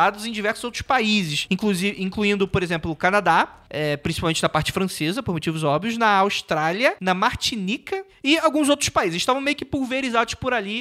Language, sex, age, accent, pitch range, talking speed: Portuguese, male, 20-39, Brazilian, 160-220 Hz, 165 wpm